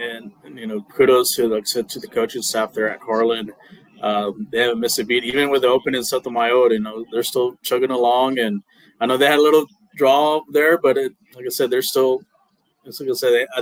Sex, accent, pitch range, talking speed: male, American, 115-170 Hz, 240 wpm